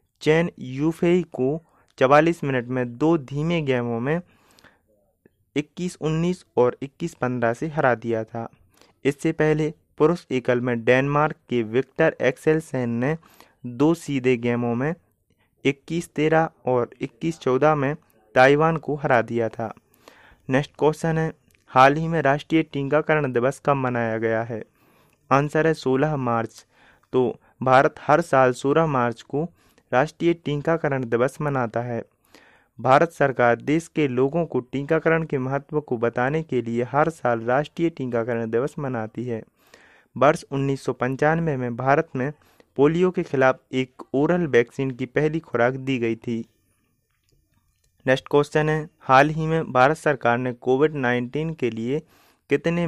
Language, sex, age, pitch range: Hindi, male, 30-49, 125-155 Hz